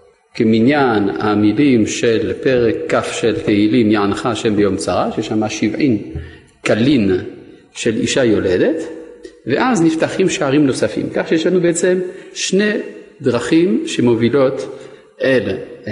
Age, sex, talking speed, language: 50-69, male, 110 wpm, Hebrew